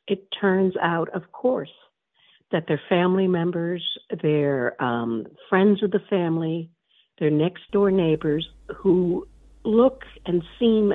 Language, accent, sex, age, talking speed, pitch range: English, American, female, 60-79, 125 wpm, 150-205 Hz